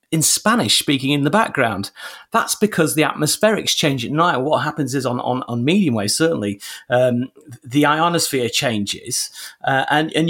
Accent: British